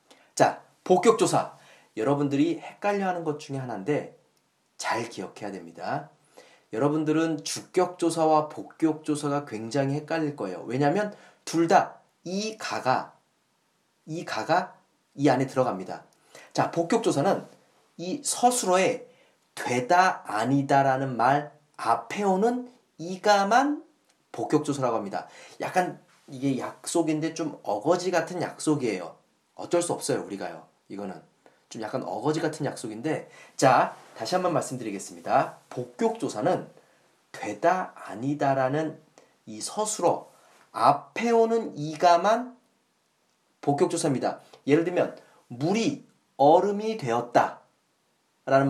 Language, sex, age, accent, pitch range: Korean, male, 40-59, native, 135-185 Hz